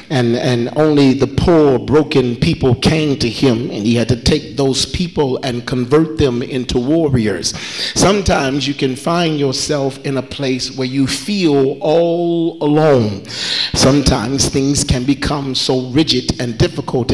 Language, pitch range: English, 130-155 Hz